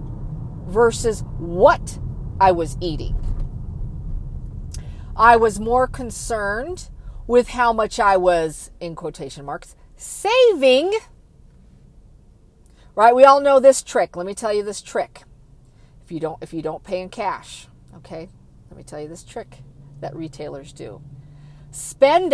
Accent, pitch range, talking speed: American, 140-235 Hz, 135 wpm